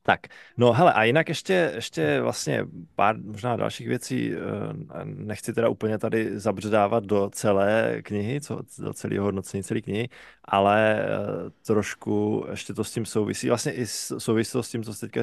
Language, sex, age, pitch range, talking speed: Czech, male, 20-39, 100-120 Hz, 160 wpm